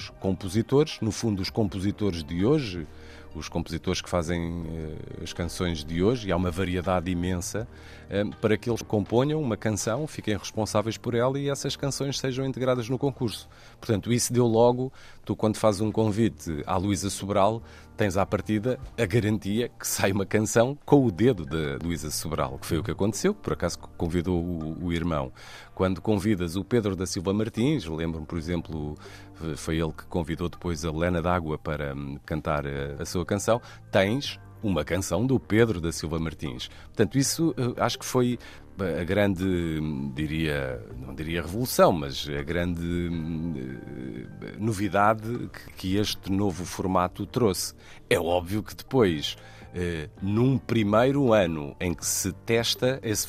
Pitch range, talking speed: 85-110 Hz, 155 wpm